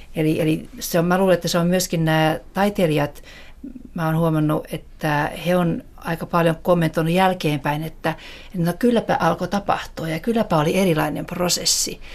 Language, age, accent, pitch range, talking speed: Finnish, 60-79, native, 155-175 Hz, 150 wpm